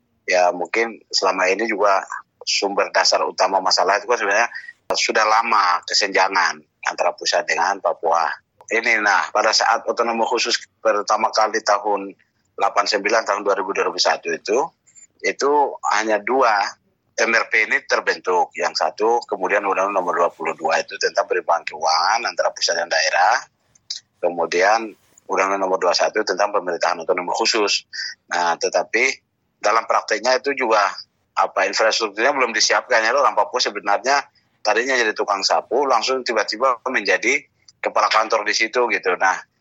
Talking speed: 130 wpm